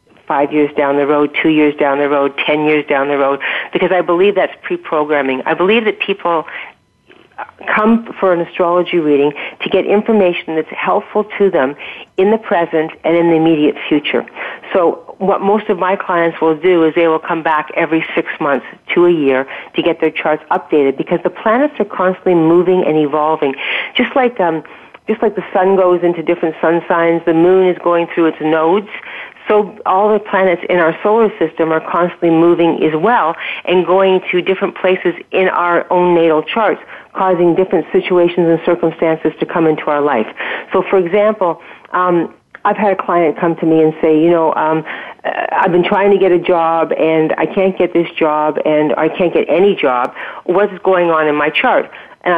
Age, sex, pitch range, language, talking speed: 50-69, female, 155-190 Hz, English, 195 wpm